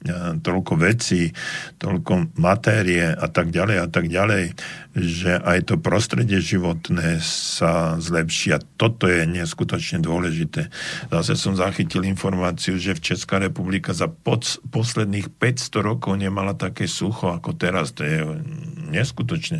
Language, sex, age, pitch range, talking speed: Slovak, male, 50-69, 90-115 Hz, 130 wpm